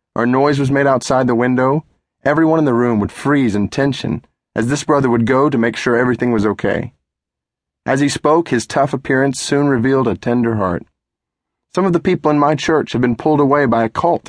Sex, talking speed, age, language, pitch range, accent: male, 215 wpm, 30-49, English, 110-135 Hz, American